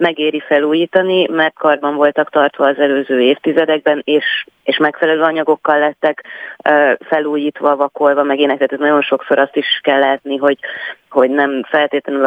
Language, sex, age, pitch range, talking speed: Hungarian, female, 30-49, 130-145 Hz, 135 wpm